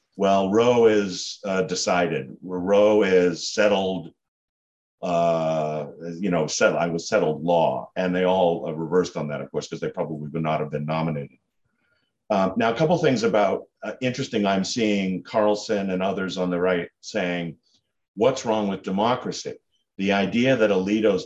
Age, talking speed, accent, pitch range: 50-69, 160 wpm, American, 90-105 Hz